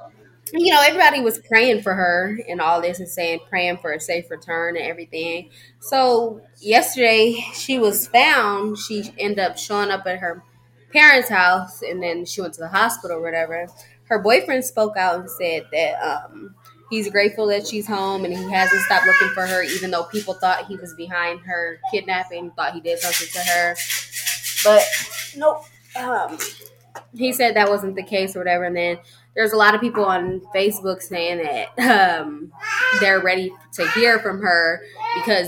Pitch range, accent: 180-245 Hz, American